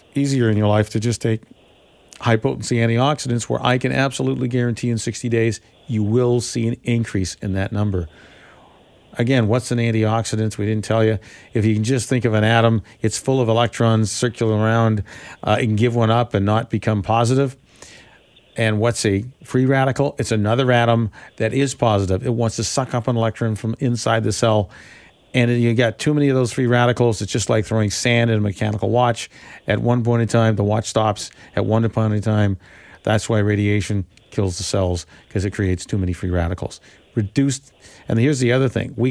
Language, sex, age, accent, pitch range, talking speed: English, male, 50-69, American, 105-125 Hz, 200 wpm